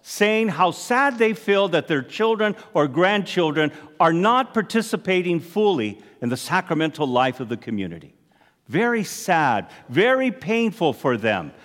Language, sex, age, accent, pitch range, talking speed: English, male, 50-69, American, 165-245 Hz, 140 wpm